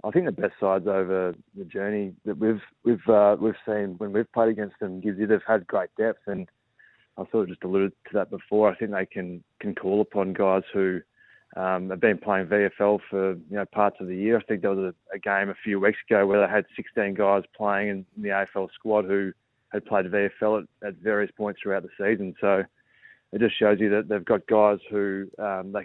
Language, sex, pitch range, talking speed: English, male, 95-105 Hz, 230 wpm